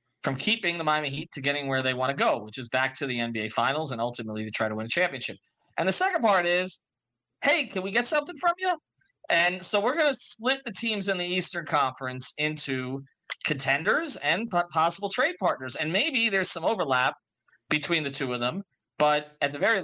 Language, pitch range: English, 130-180 Hz